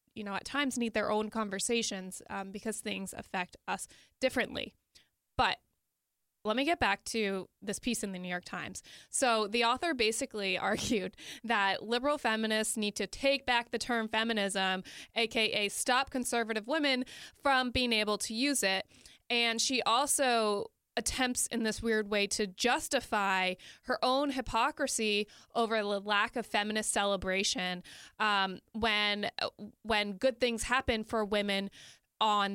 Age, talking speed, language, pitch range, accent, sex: 20-39, 145 wpm, English, 205-250 Hz, American, female